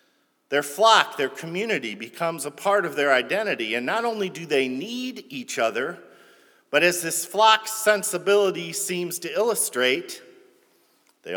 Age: 50-69